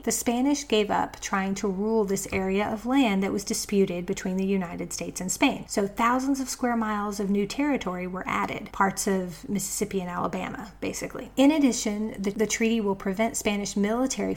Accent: American